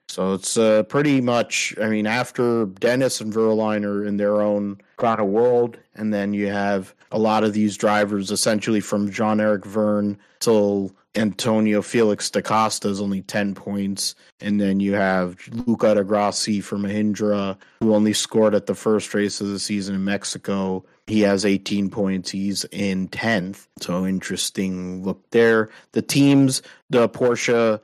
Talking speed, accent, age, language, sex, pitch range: 165 wpm, American, 30-49, English, male, 100-110 Hz